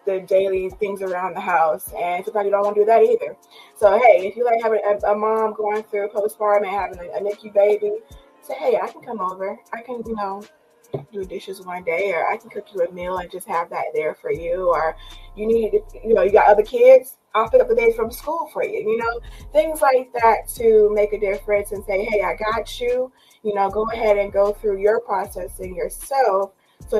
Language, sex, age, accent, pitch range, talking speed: English, female, 20-39, American, 195-245 Hz, 230 wpm